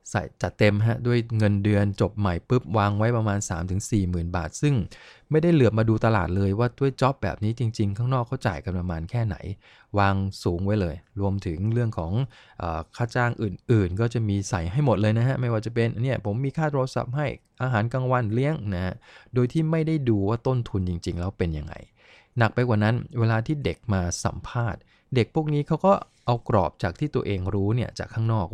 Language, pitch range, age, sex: English, 100-125 Hz, 20-39, male